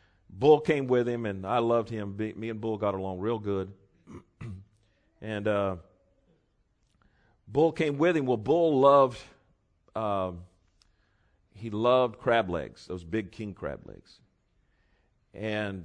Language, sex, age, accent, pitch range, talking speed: English, male, 40-59, American, 95-120 Hz, 135 wpm